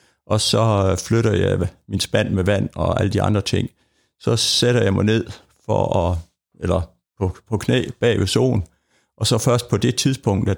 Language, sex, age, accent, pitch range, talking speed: Danish, male, 60-79, native, 95-115 Hz, 195 wpm